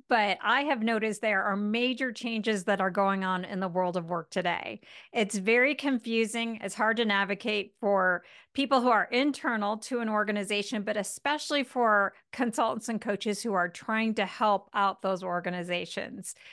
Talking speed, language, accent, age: 170 wpm, English, American, 40-59